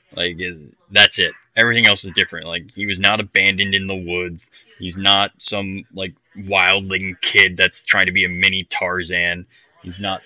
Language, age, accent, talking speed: English, 20-39, American, 175 wpm